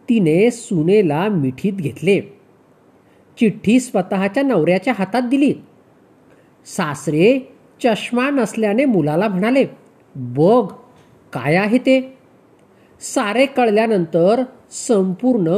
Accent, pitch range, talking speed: native, 160-240 Hz, 80 wpm